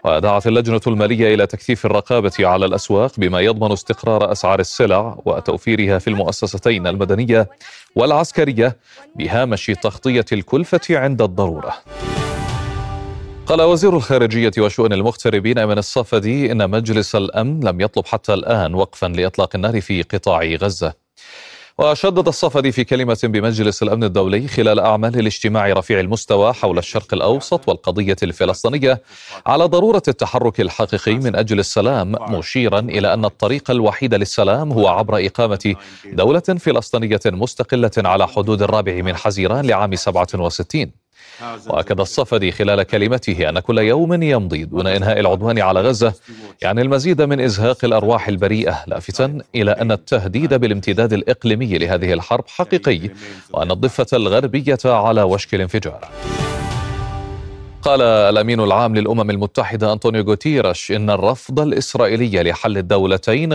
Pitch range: 100-125 Hz